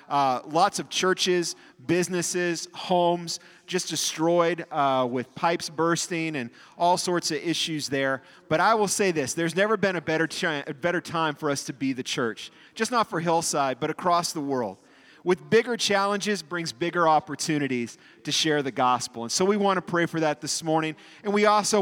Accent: American